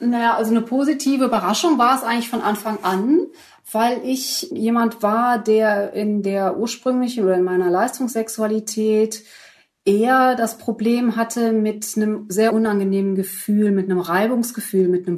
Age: 30-49